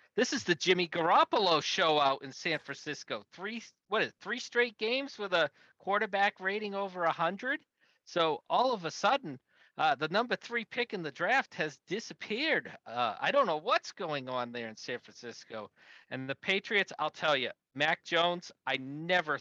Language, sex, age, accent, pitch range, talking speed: English, male, 40-59, American, 135-175 Hz, 185 wpm